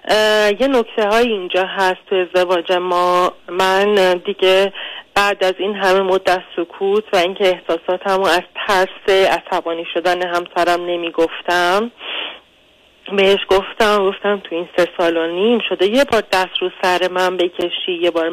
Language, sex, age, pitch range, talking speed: Persian, female, 30-49, 180-235 Hz, 145 wpm